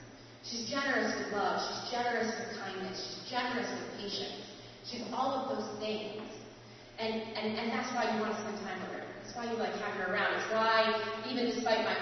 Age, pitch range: 30-49, 200-250 Hz